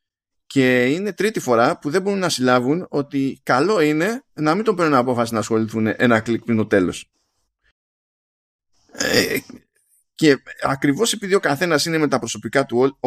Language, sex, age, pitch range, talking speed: Greek, male, 20-39, 110-165 Hz, 165 wpm